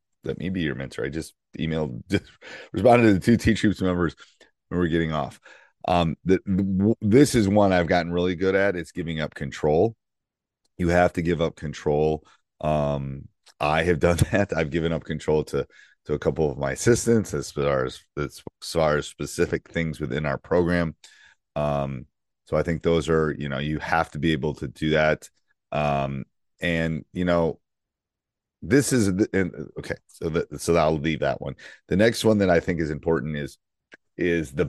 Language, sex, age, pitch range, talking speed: English, male, 30-49, 75-90 Hz, 185 wpm